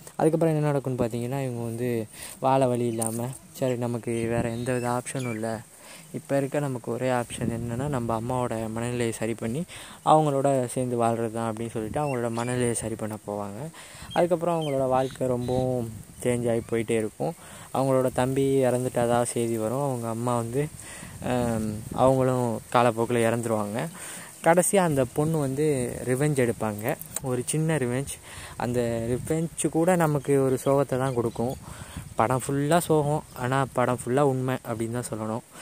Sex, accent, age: female, native, 20-39